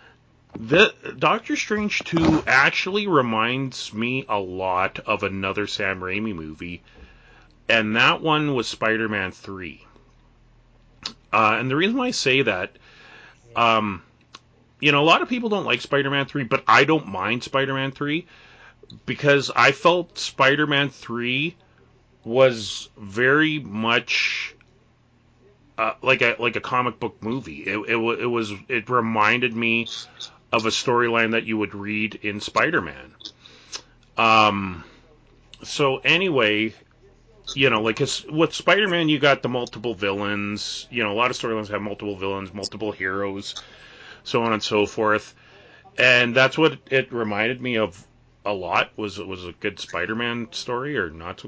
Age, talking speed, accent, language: 30-49, 155 wpm, American, English